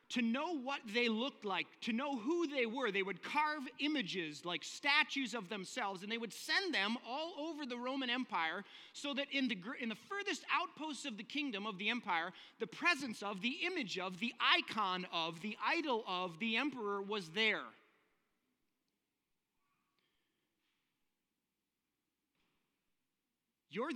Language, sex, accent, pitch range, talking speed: English, male, American, 220-320 Hz, 150 wpm